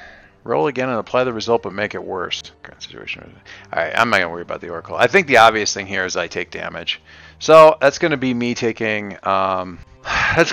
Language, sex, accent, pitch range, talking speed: English, male, American, 90-115 Hz, 215 wpm